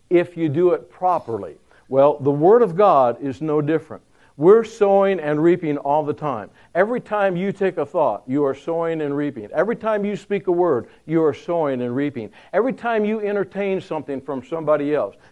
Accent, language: American, English